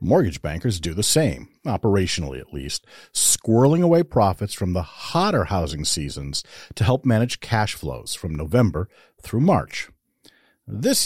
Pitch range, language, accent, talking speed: 85-120 Hz, English, American, 140 wpm